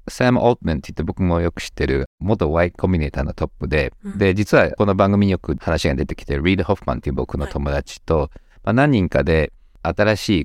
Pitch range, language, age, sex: 75-120 Hz, Japanese, 50-69, male